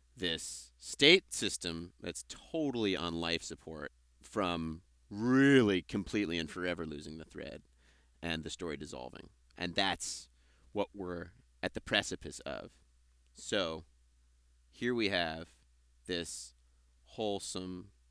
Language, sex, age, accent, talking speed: English, male, 30-49, American, 115 wpm